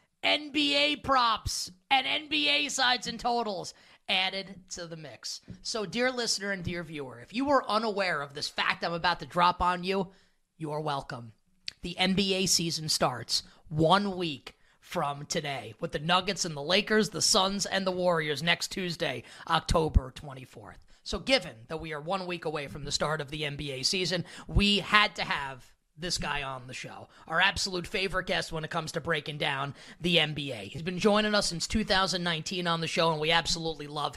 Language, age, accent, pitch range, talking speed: English, 30-49, American, 160-210 Hz, 185 wpm